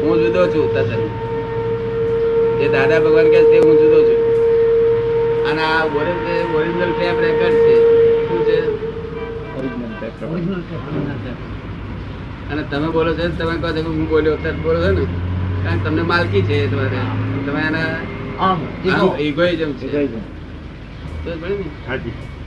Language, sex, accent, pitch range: Gujarati, male, native, 125-170 Hz